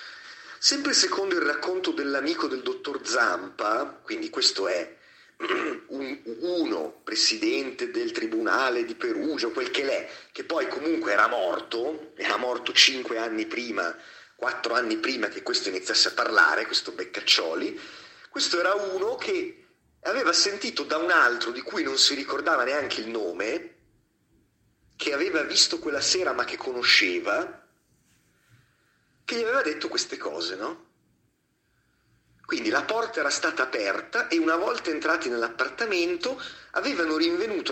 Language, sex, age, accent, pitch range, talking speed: Italian, male, 30-49, native, 335-385 Hz, 135 wpm